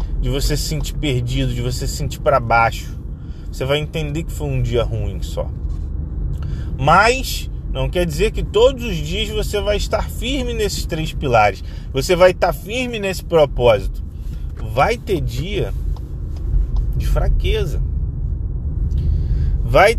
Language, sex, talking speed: Portuguese, male, 140 wpm